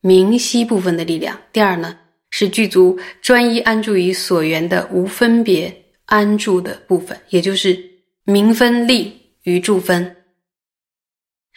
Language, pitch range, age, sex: Chinese, 180-210 Hz, 20-39, female